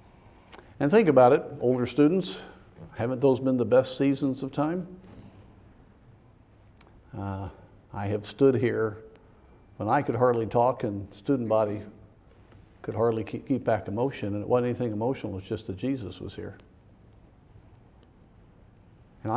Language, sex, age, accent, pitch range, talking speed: English, male, 50-69, American, 100-115 Hz, 145 wpm